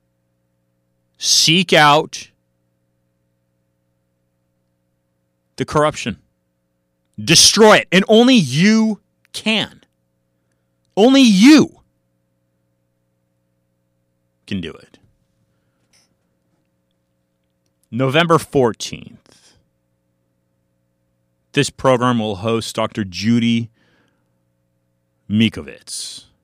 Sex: male